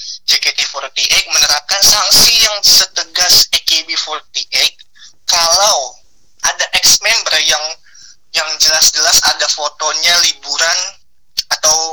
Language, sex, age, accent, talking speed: Indonesian, male, 20-39, native, 80 wpm